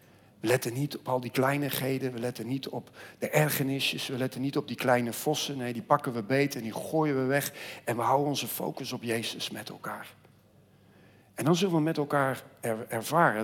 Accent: Dutch